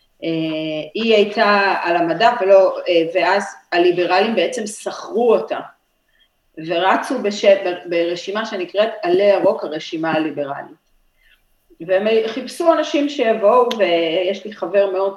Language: Hebrew